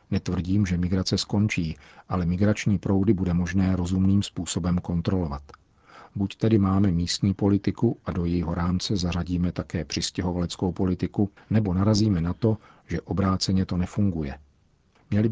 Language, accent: Czech, native